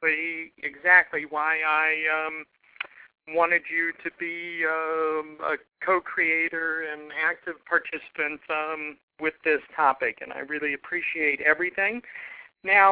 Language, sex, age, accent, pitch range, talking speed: English, male, 50-69, American, 160-190 Hz, 110 wpm